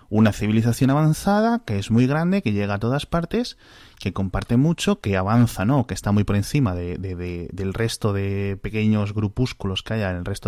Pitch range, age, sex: 95-120 Hz, 20-39, male